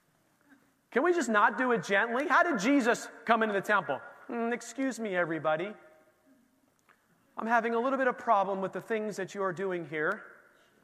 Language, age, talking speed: English, 30-49, 185 wpm